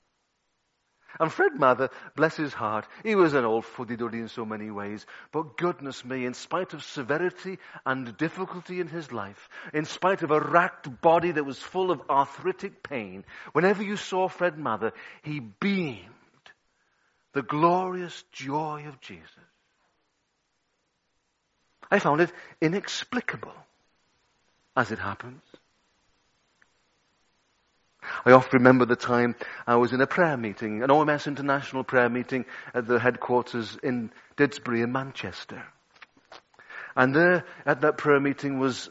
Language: English